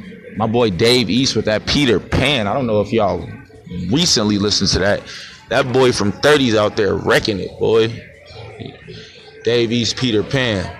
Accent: American